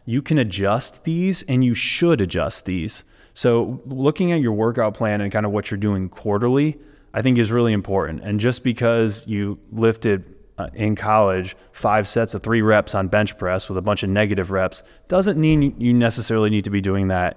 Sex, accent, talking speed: male, American, 195 wpm